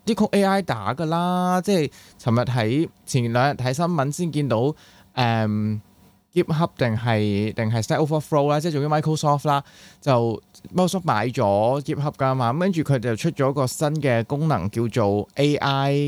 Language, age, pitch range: Chinese, 20-39, 115-155 Hz